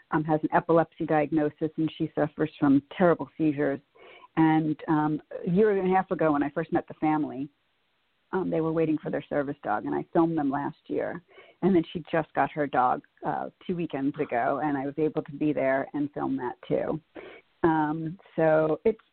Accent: American